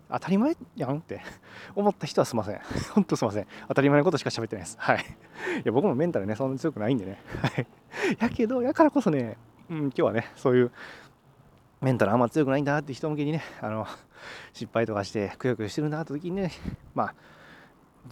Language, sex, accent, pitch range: Japanese, male, native, 110-155 Hz